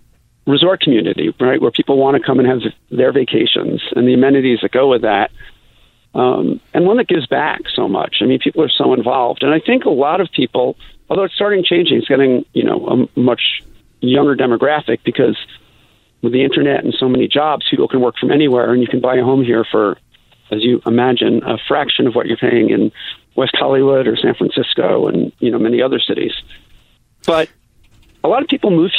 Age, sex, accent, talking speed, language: 50-69, male, American, 205 wpm, English